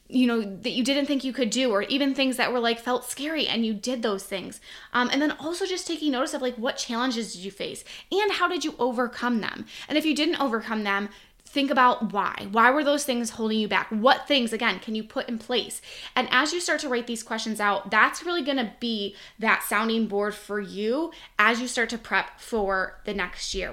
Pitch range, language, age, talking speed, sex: 215-270 Hz, English, 10-29, 240 wpm, female